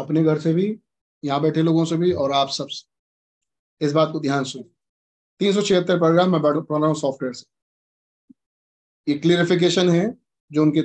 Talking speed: 125 wpm